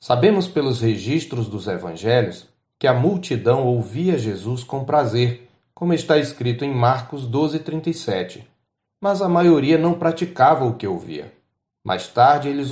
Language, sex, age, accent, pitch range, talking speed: Portuguese, male, 40-59, Brazilian, 120-160 Hz, 135 wpm